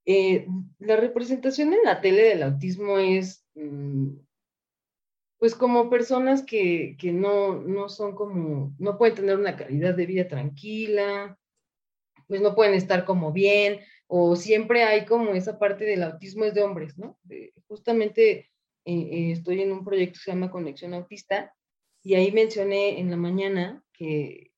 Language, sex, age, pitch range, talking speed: Spanish, female, 30-49, 165-210 Hz, 150 wpm